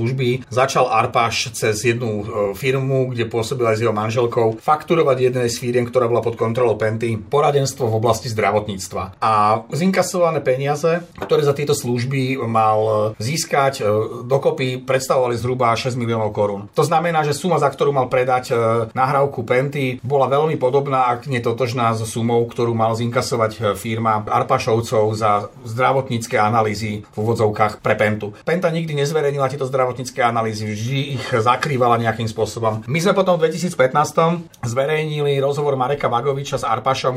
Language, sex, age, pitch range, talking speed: Slovak, male, 40-59, 110-135 Hz, 150 wpm